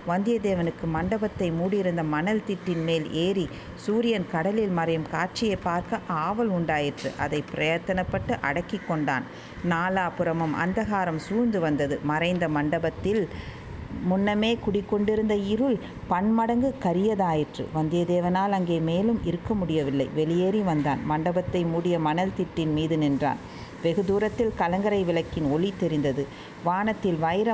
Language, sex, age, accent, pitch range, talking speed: Tamil, female, 50-69, native, 165-205 Hz, 110 wpm